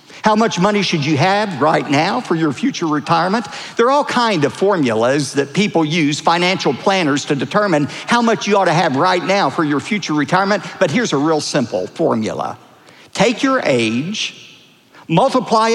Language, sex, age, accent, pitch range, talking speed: English, male, 50-69, American, 150-210 Hz, 180 wpm